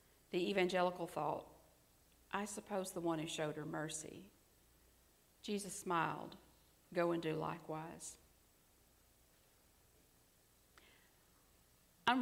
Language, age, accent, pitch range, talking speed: English, 40-59, American, 150-205 Hz, 90 wpm